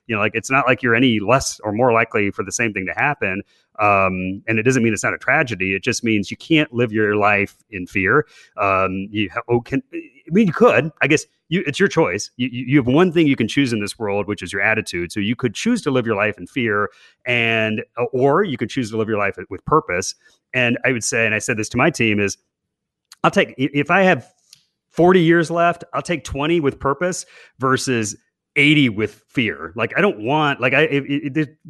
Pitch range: 105-145 Hz